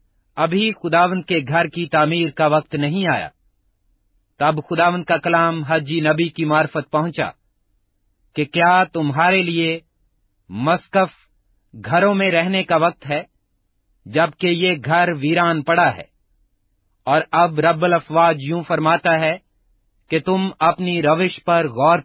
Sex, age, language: male, 40-59, Urdu